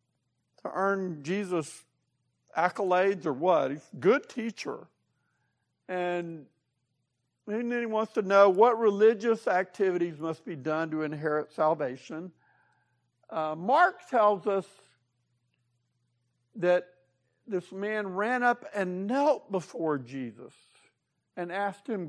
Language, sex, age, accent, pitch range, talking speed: English, male, 60-79, American, 150-215 Hz, 110 wpm